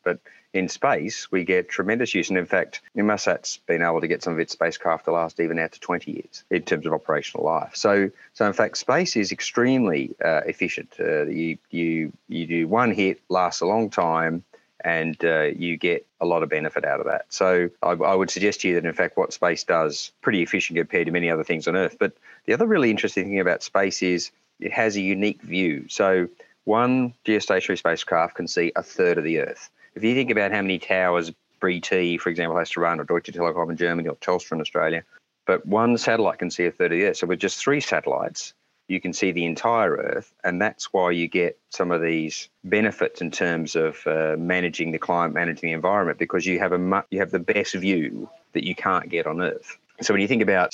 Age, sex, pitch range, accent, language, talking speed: 30-49, male, 85-100 Hz, Australian, English, 230 wpm